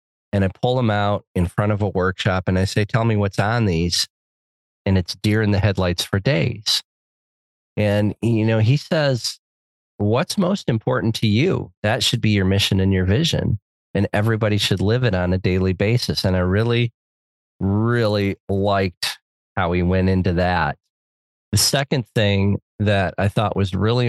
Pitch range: 90-110 Hz